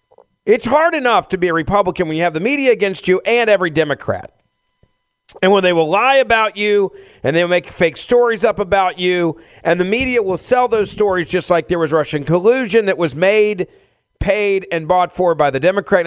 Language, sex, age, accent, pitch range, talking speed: English, male, 40-59, American, 150-210 Hz, 205 wpm